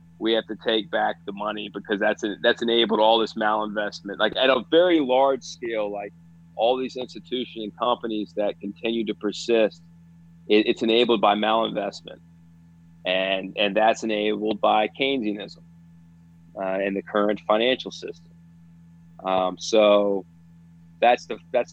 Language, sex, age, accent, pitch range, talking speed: English, male, 30-49, American, 85-115 Hz, 140 wpm